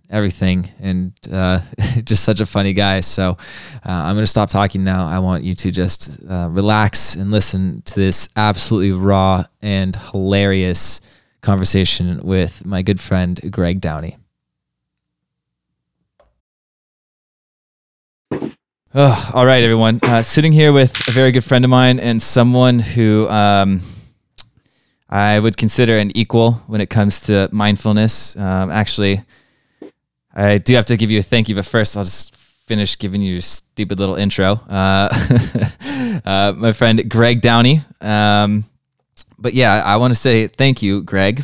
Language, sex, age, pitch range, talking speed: English, male, 20-39, 95-120 Hz, 150 wpm